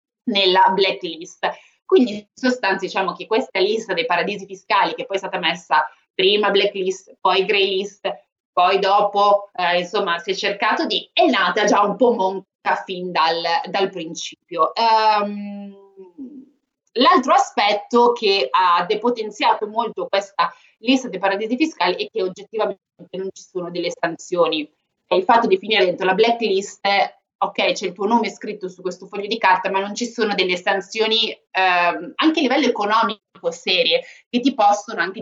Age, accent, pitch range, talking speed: 20-39, native, 185-255 Hz, 160 wpm